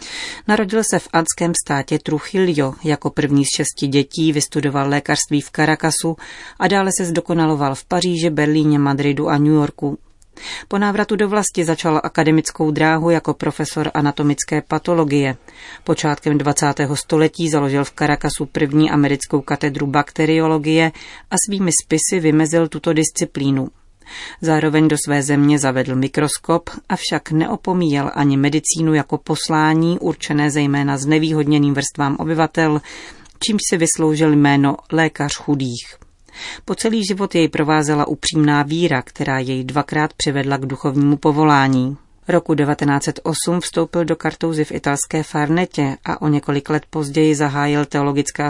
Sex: female